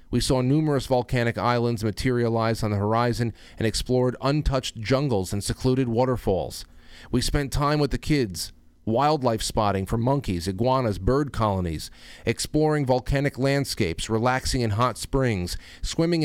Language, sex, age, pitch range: English, male, 40-59, 100-135 Hz